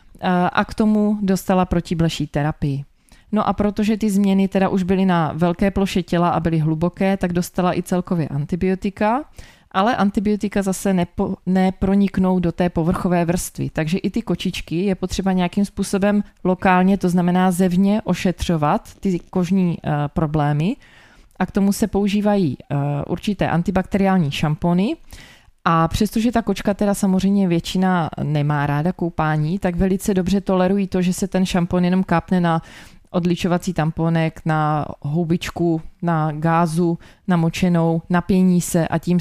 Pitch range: 165-190 Hz